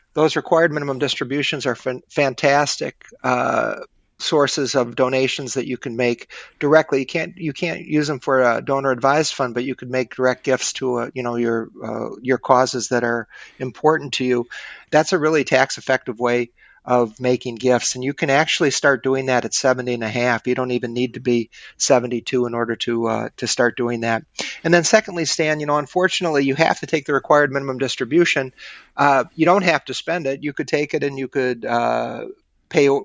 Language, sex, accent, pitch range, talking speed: English, male, American, 125-145 Hz, 205 wpm